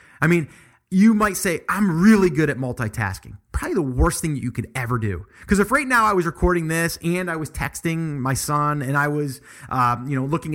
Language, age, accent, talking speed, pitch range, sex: English, 30-49, American, 230 wpm, 140-200 Hz, male